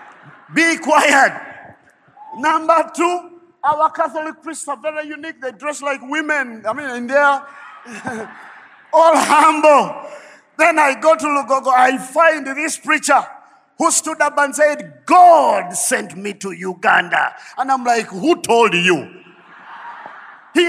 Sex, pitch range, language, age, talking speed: male, 275-320 Hz, English, 50-69, 135 wpm